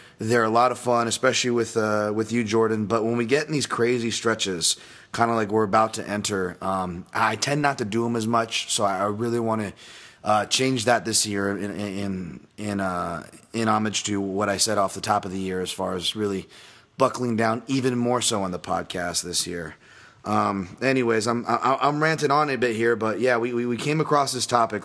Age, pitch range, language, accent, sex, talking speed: 30-49, 105-130 Hz, English, American, male, 220 wpm